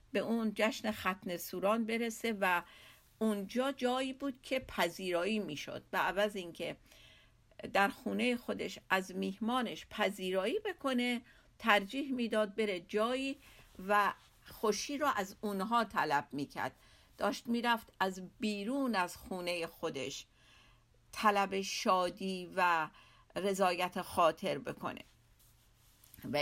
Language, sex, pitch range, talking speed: Persian, female, 185-235 Hz, 105 wpm